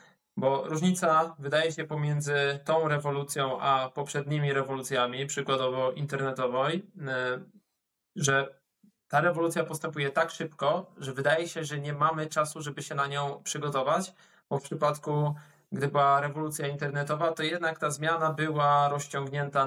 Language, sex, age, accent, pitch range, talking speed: Polish, male, 20-39, native, 135-155 Hz, 130 wpm